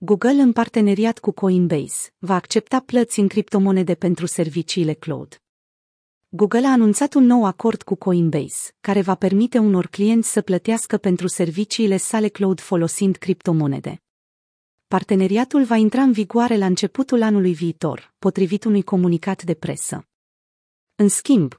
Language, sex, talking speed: Romanian, female, 140 wpm